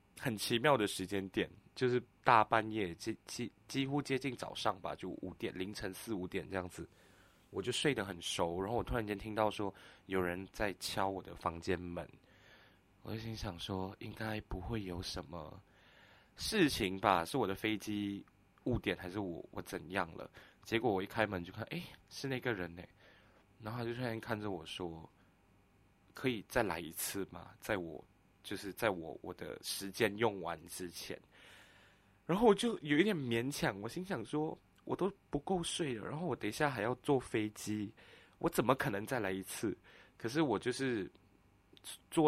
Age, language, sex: 20-39, Chinese, male